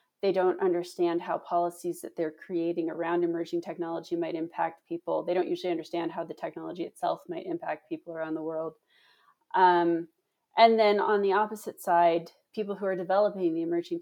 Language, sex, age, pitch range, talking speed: English, female, 20-39, 170-225 Hz, 175 wpm